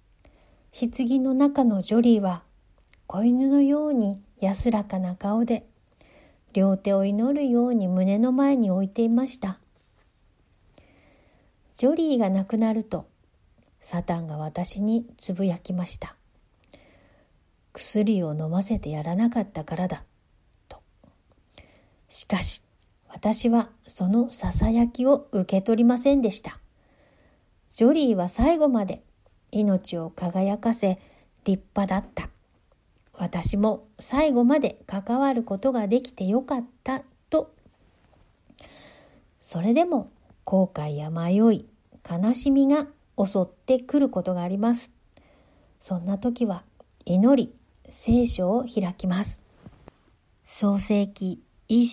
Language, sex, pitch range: Japanese, female, 185-240 Hz